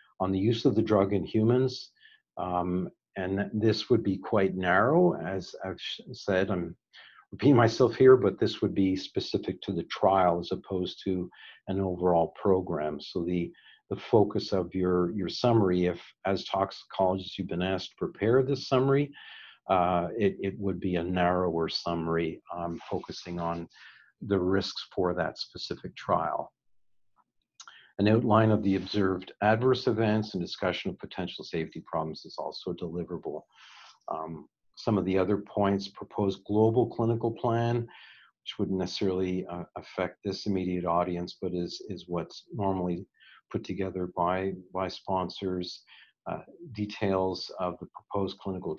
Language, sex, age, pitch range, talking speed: English, male, 50-69, 90-100 Hz, 150 wpm